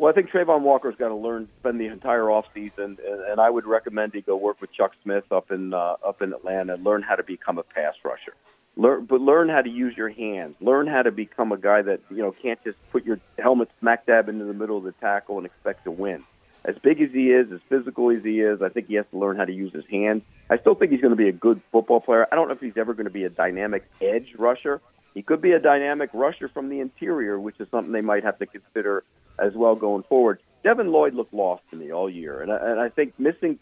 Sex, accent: male, American